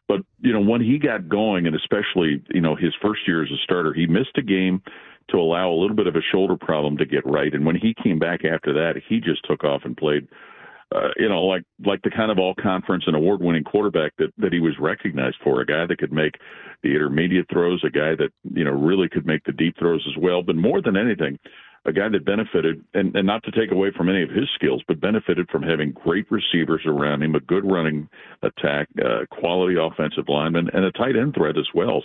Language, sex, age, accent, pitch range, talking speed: English, male, 50-69, American, 80-95 Hz, 240 wpm